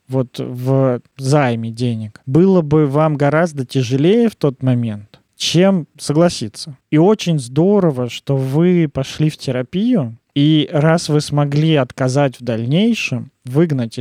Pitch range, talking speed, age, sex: 130-165 Hz, 130 wpm, 20-39, male